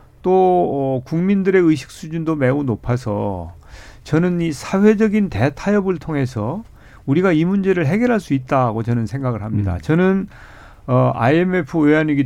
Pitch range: 130-185 Hz